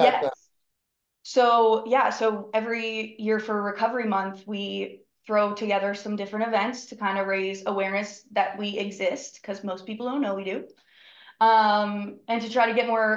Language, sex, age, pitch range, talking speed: English, female, 20-39, 195-225 Hz, 170 wpm